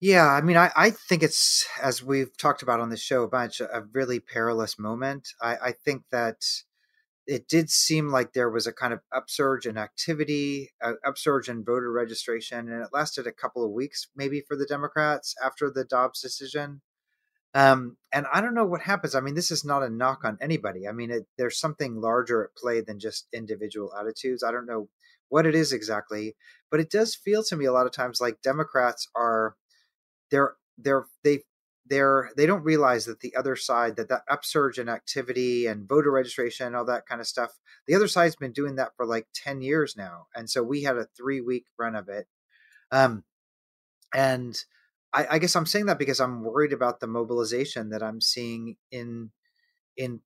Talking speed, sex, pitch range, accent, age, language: 205 wpm, male, 115-145 Hz, American, 30-49, English